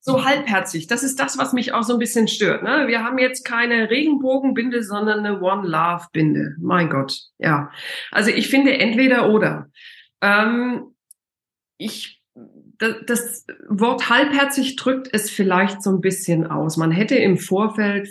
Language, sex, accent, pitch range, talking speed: German, female, German, 175-230 Hz, 150 wpm